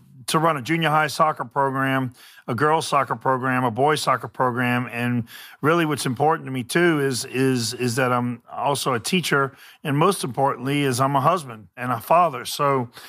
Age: 40-59